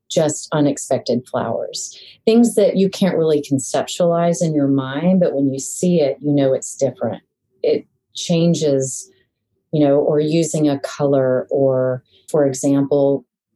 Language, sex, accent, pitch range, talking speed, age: English, female, American, 135-155 Hz, 140 wpm, 30-49